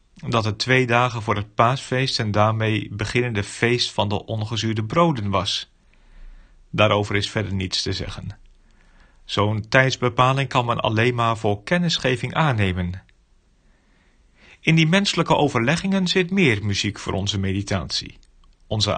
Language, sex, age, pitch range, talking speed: Dutch, male, 40-59, 105-140 Hz, 135 wpm